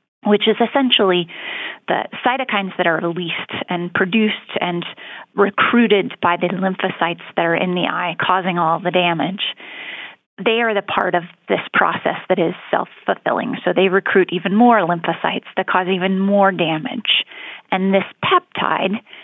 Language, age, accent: English, 30-49, American